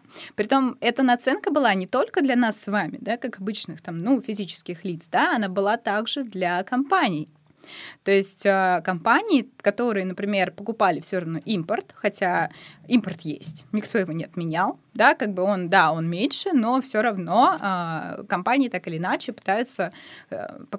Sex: female